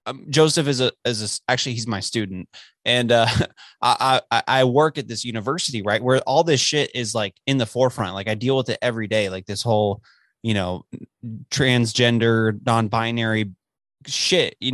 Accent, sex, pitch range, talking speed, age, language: American, male, 115-145 Hz, 180 wpm, 20-39, English